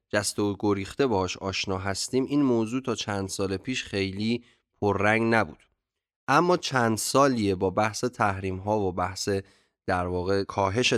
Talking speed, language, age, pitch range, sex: 150 wpm, Persian, 20-39, 100-130 Hz, male